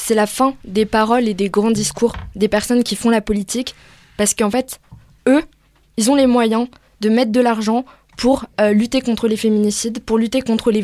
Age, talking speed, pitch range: 20-39, 205 wpm, 210-255 Hz